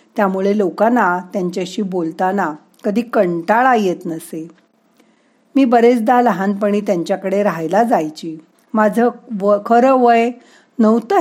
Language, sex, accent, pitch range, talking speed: Marathi, female, native, 190-240 Hz, 105 wpm